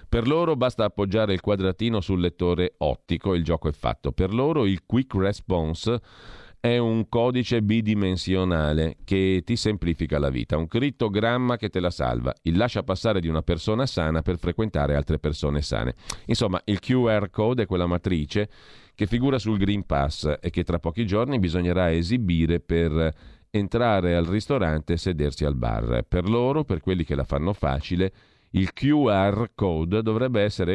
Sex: male